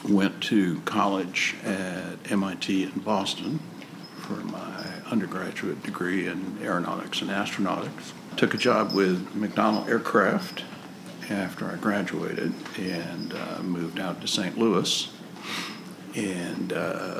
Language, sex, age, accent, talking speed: English, male, 60-79, American, 110 wpm